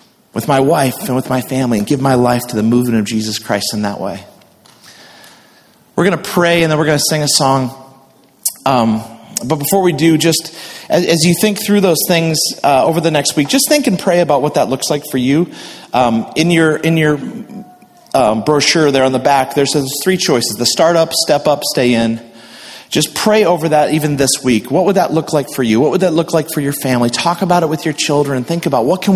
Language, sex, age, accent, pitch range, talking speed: English, male, 40-59, American, 125-160 Hz, 235 wpm